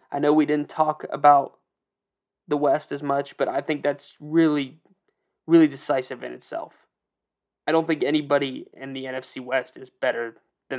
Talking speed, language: 165 wpm, English